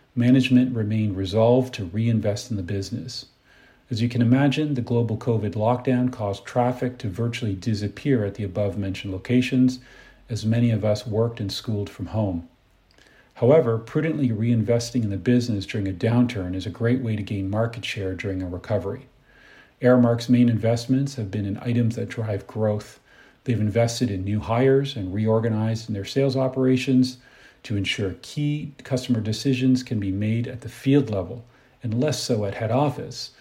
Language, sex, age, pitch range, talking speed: English, male, 40-59, 105-130 Hz, 165 wpm